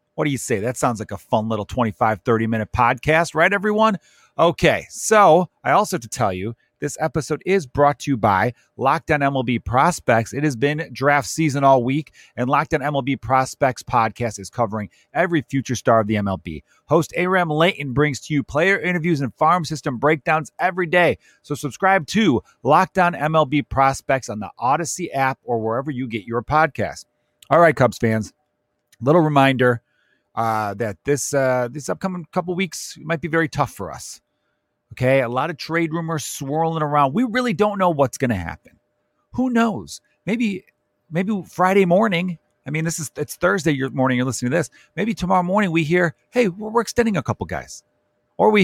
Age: 30-49